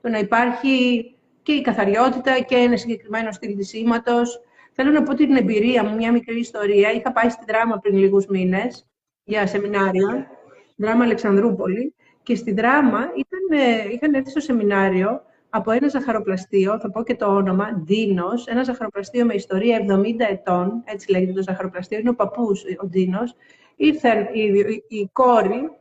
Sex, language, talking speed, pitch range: female, Greek, 150 wpm, 210-250 Hz